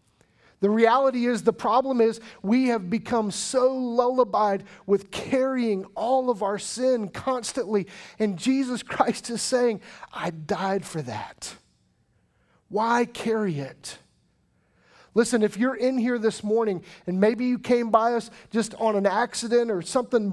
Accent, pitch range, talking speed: American, 180-235 Hz, 145 wpm